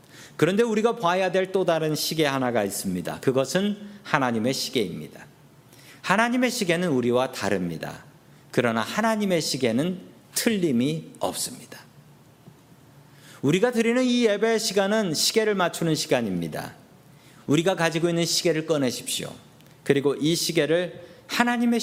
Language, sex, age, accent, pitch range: Korean, male, 40-59, native, 140-210 Hz